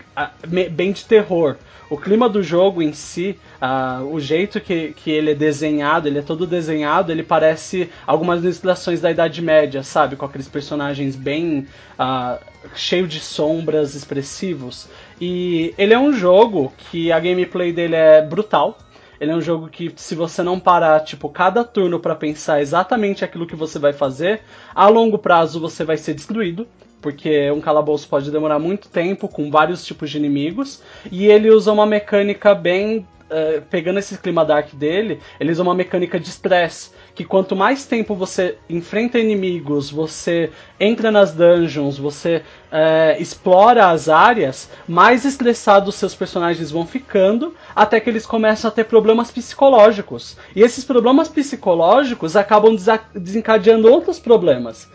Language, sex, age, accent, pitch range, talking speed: Portuguese, male, 20-39, Brazilian, 155-205 Hz, 160 wpm